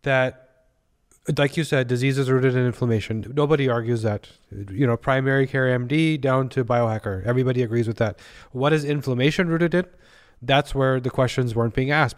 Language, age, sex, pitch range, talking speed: English, 30-49, male, 120-140 Hz, 175 wpm